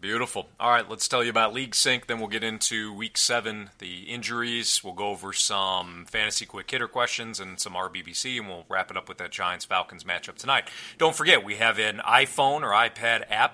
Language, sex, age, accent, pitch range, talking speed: English, male, 40-59, American, 100-125 Hz, 215 wpm